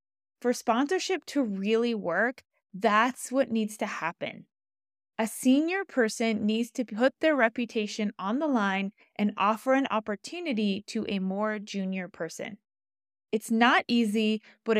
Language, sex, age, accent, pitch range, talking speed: English, female, 20-39, American, 200-260 Hz, 140 wpm